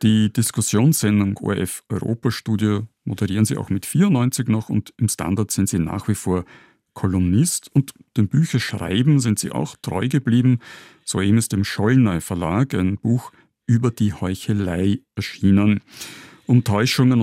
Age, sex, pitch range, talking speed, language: 50-69, male, 100-125 Hz, 145 wpm, German